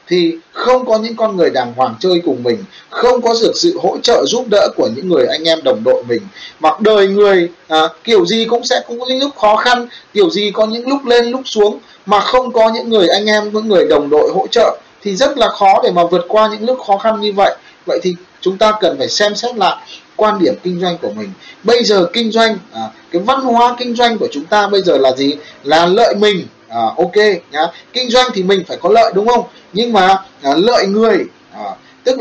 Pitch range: 175-240 Hz